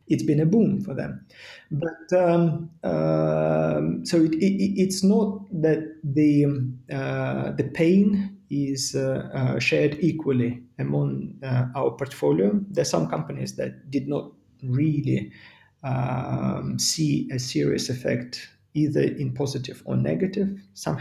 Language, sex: English, male